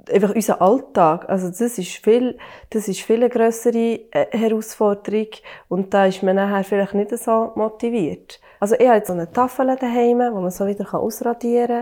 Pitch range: 205-245 Hz